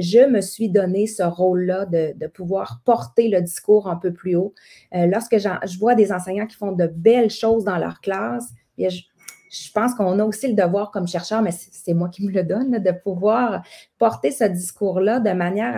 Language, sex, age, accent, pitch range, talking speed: French, female, 30-49, Canadian, 185-225 Hz, 215 wpm